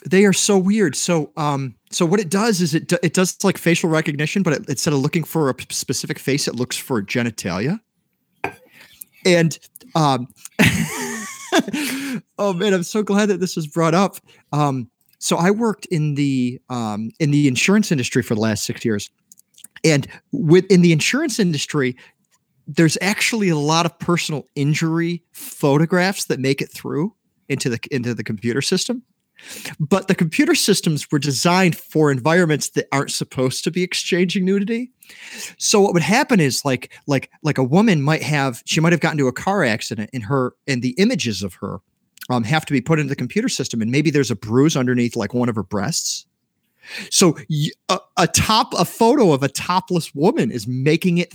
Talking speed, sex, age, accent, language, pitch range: 185 wpm, male, 40-59, American, English, 135-185 Hz